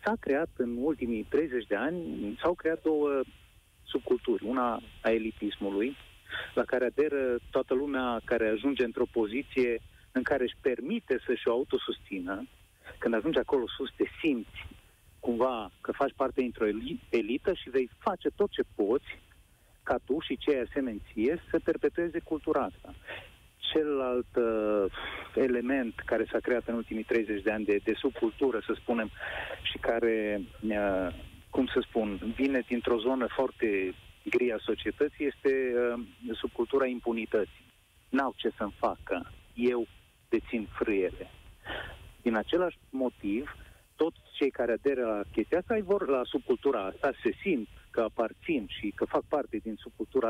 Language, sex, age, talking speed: Romanian, male, 30-49, 145 wpm